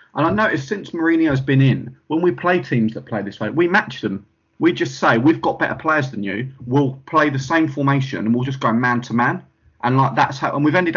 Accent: British